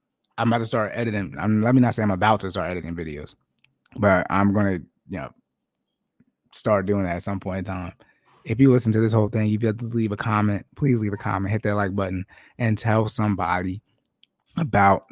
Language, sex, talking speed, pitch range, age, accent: English, male, 220 wpm, 95-115 Hz, 20-39, American